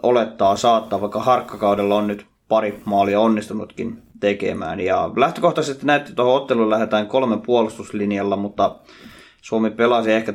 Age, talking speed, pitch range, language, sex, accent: 20-39, 130 wpm, 105-125 Hz, Finnish, male, native